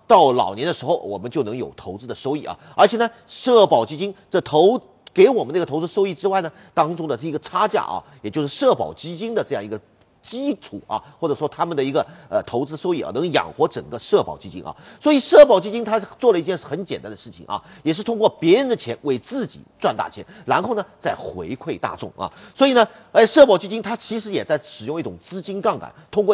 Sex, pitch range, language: male, 165-245 Hz, Chinese